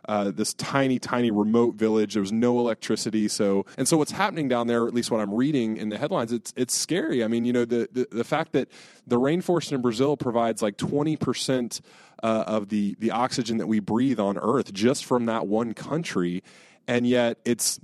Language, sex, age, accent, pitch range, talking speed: English, male, 20-39, American, 105-125 Hz, 210 wpm